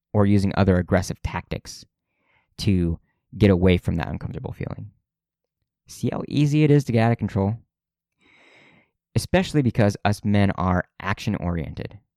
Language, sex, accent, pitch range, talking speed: English, male, American, 90-115 Hz, 140 wpm